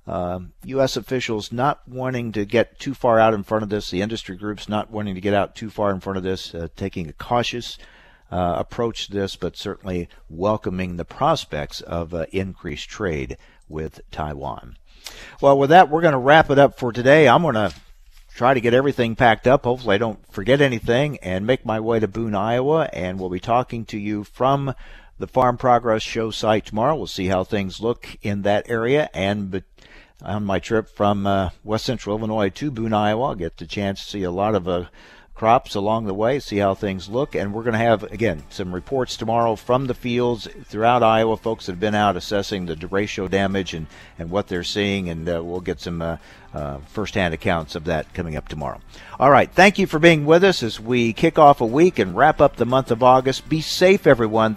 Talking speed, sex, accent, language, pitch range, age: 215 wpm, male, American, English, 95-125 Hz, 50-69